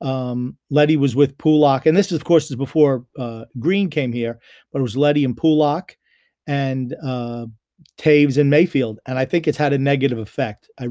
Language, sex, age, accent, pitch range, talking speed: English, male, 40-59, American, 130-155 Hz, 200 wpm